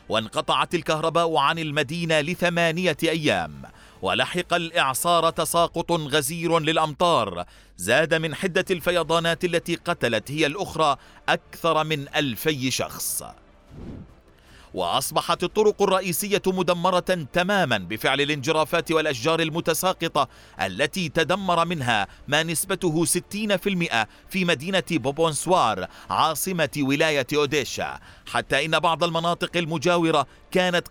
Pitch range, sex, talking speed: 150-175 Hz, male, 100 wpm